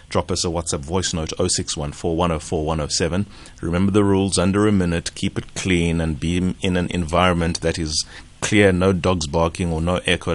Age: 30-49